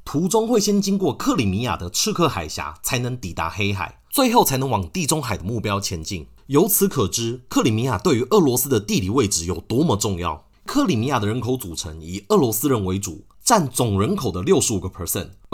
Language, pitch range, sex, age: Chinese, 95-155 Hz, male, 30-49